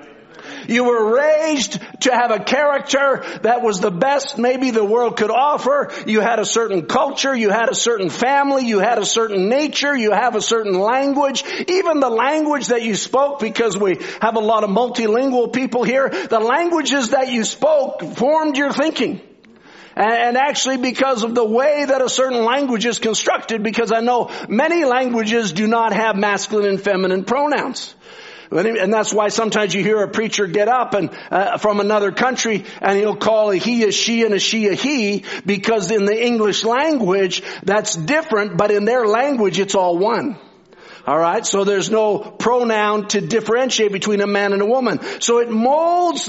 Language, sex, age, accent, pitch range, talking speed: English, male, 50-69, American, 210-265 Hz, 185 wpm